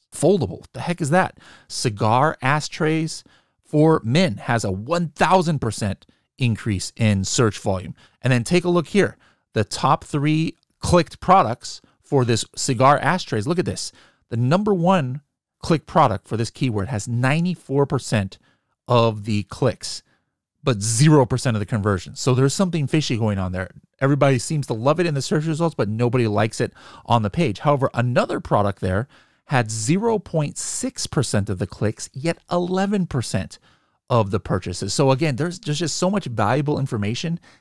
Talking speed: 155 wpm